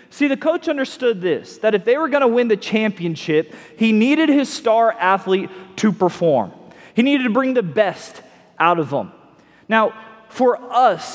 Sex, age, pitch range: male, 30-49, 185-240 Hz